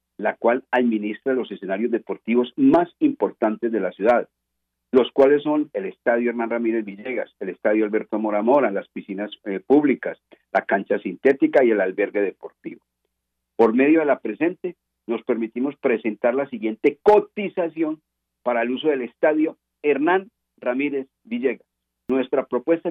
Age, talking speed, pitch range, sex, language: 50-69, 145 wpm, 105-160 Hz, male, Spanish